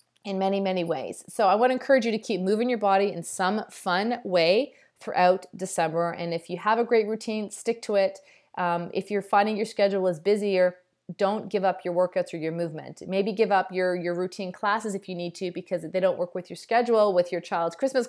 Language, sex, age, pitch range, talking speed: English, female, 30-49, 175-220 Hz, 230 wpm